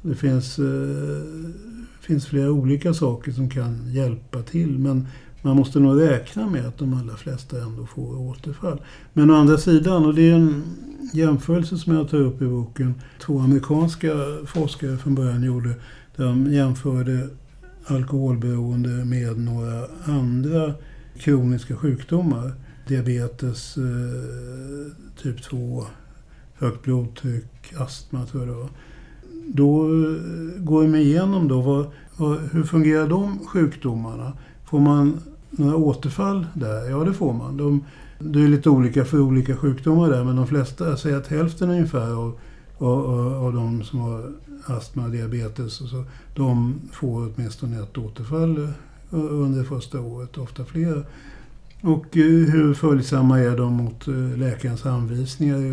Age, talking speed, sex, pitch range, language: 60-79, 130 wpm, male, 125-155 Hz, English